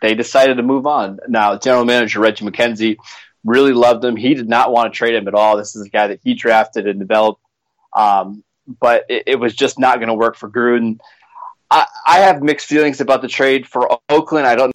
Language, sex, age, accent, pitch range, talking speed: English, male, 20-39, American, 115-135 Hz, 225 wpm